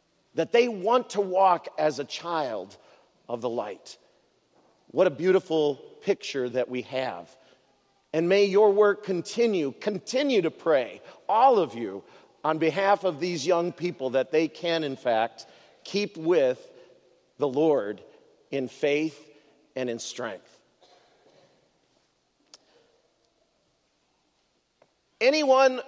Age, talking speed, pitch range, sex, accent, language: 50-69, 115 wpm, 150-235 Hz, male, American, English